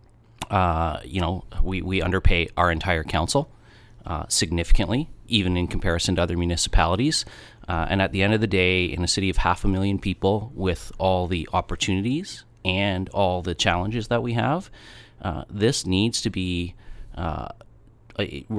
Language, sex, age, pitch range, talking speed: English, male, 30-49, 85-105 Hz, 160 wpm